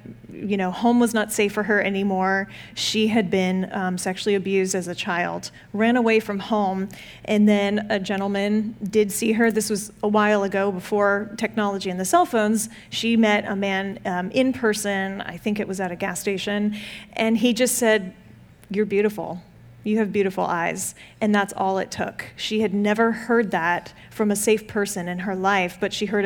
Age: 30-49